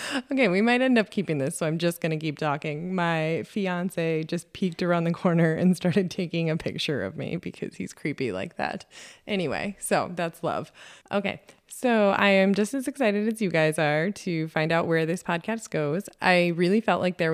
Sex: female